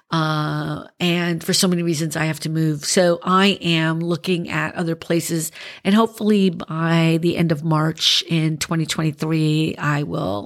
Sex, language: female, English